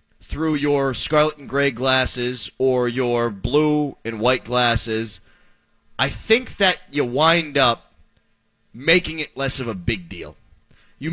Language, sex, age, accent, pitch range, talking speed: English, male, 30-49, American, 120-180 Hz, 140 wpm